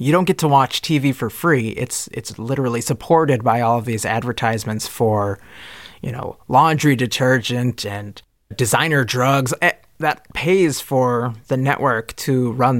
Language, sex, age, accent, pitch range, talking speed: English, male, 20-39, American, 115-145 Hz, 150 wpm